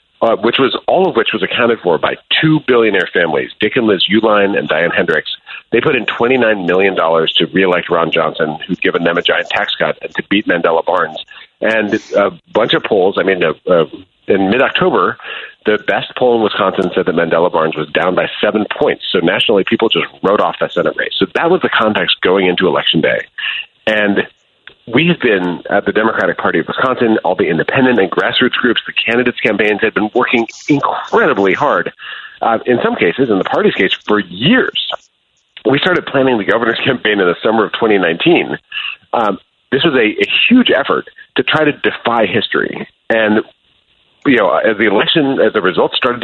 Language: English